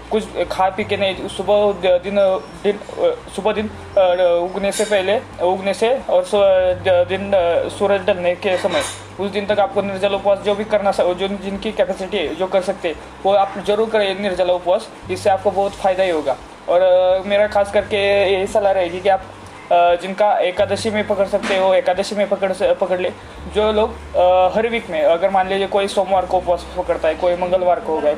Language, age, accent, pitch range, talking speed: Hindi, 20-39, native, 180-205 Hz, 185 wpm